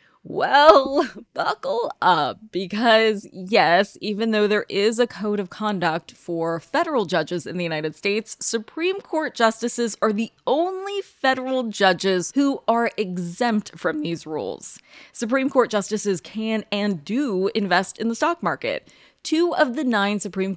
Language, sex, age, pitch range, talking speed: English, female, 20-39, 175-235 Hz, 145 wpm